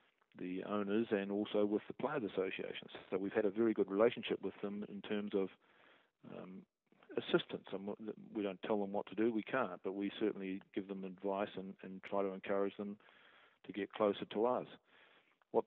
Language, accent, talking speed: English, Australian, 190 wpm